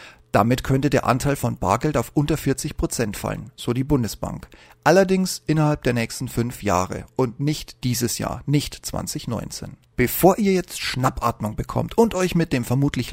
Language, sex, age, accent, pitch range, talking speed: German, male, 40-59, German, 120-155 Hz, 160 wpm